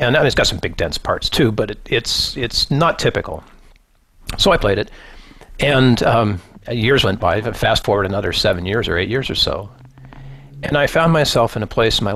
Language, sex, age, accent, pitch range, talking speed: English, male, 50-69, American, 100-130 Hz, 205 wpm